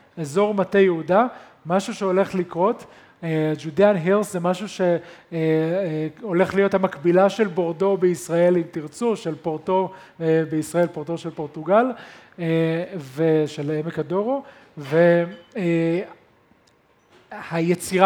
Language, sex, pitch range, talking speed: Hebrew, male, 165-200 Hz, 110 wpm